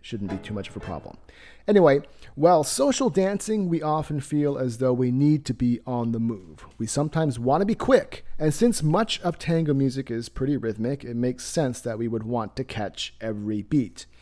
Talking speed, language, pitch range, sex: 205 wpm, English, 115-165 Hz, male